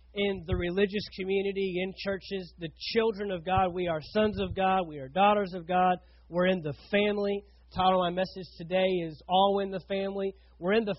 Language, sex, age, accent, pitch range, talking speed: English, male, 30-49, American, 175-230 Hz, 200 wpm